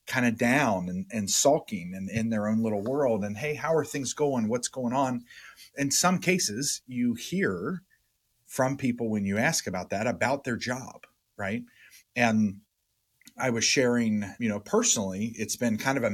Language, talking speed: English, 185 wpm